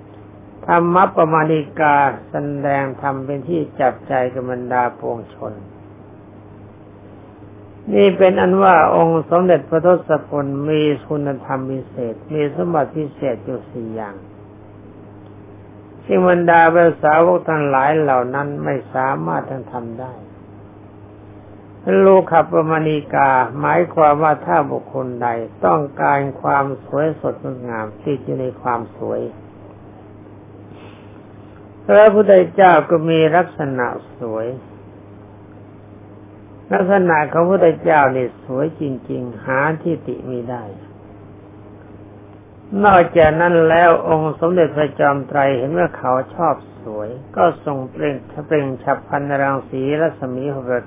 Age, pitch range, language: 60-79, 105-150 Hz, Thai